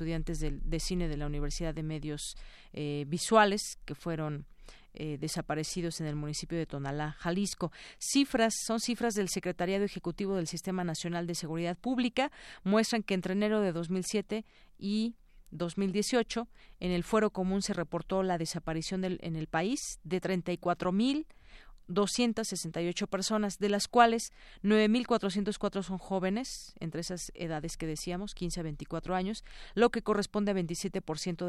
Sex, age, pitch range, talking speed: female, 40-59, 165-215 Hz, 145 wpm